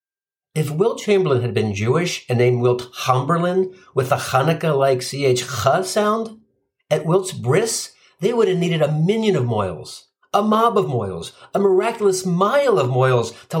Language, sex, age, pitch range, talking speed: English, male, 60-79, 120-175 Hz, 155 wpm